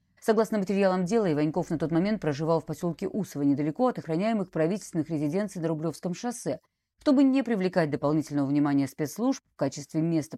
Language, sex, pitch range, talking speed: Russian, female, 150-205 Hz, 160 wpm